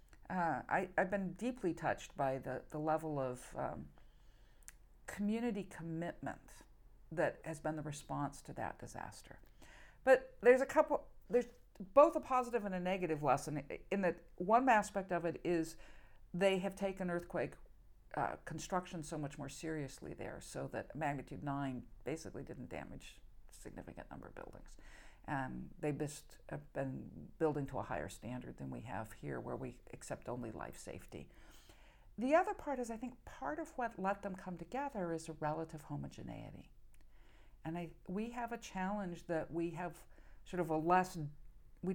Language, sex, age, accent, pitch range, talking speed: English, female, 50-69, American, 135-195 Hz, 160 wpm